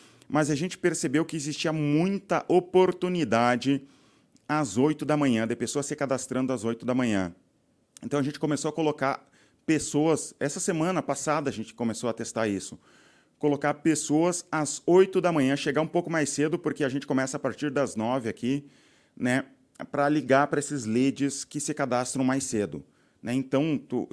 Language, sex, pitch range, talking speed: Portuguese, male, 130-155 Hz, 175 wpm